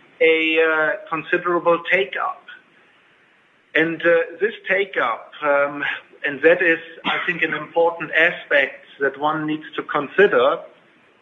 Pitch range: 150-190 Hz